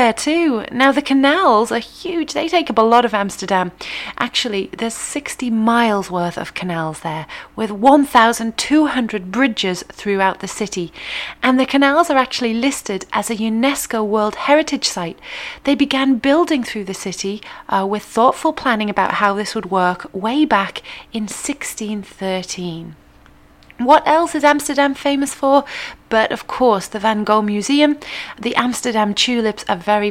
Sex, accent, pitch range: female, British, 200-270 Hz